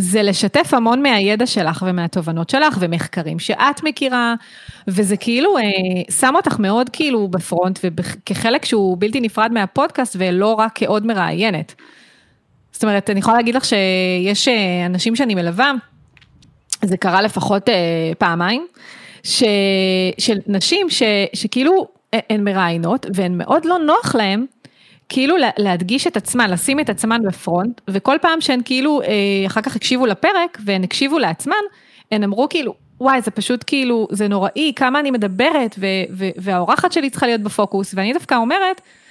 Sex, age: female, 30-49